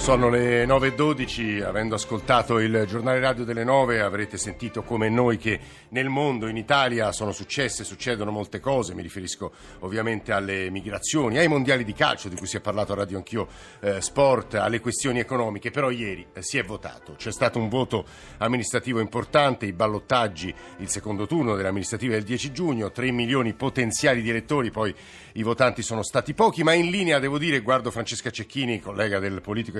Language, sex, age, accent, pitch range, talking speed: Italian, male, 50-69, native, 105-130 Hz, 175 wpm